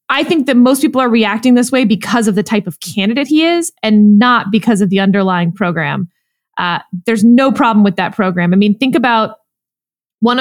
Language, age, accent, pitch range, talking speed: English, 20-39, American, 205-265 Hz, 210 wpm